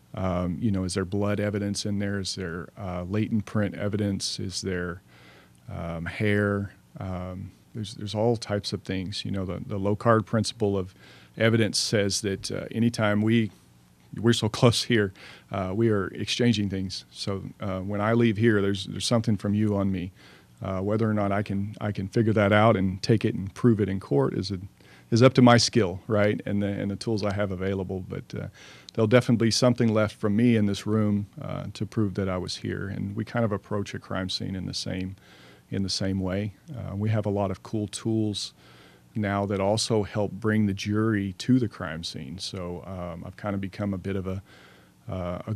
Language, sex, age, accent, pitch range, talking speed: English, male, 40-59, American, 95-110 Hz, 215 wpm